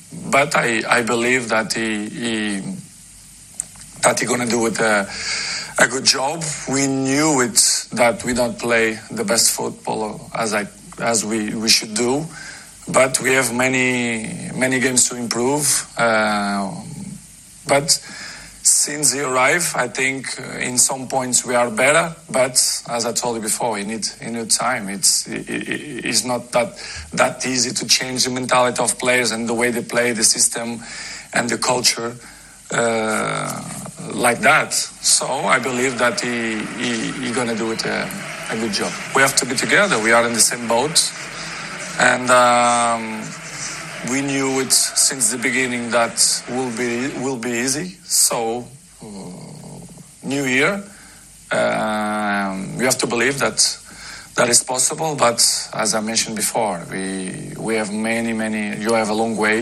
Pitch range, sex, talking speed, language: 115-135 Hz, male, 160 wpm, English